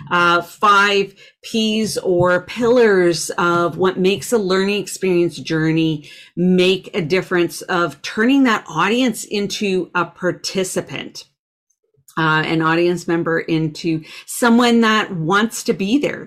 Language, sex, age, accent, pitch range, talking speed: English, female, 40-59, American, 165-215 Hz, 120 wpm